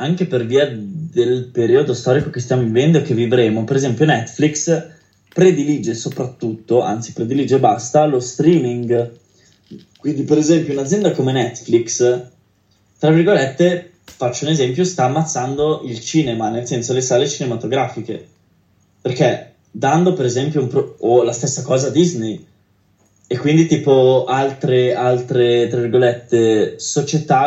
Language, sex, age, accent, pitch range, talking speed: Italian, male, 10-29, native, 120-150 Hz, 135 wpm